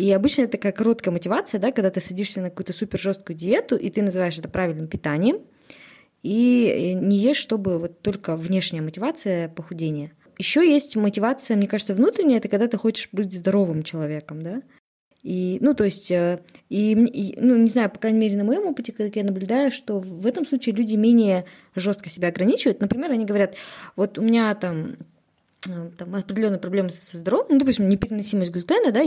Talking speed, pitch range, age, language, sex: 180 wpm, 185-230 Hz, 20-39, Russian, female